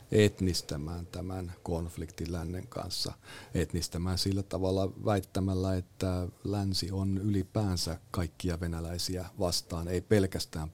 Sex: male